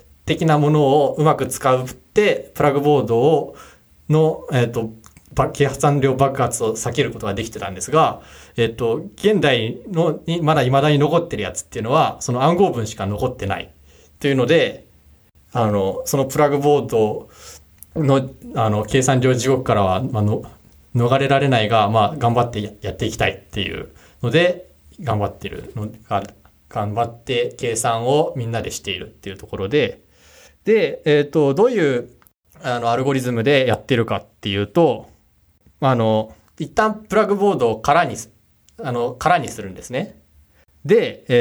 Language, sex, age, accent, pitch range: Japanese, male, 20-39, native, 115-165 Hz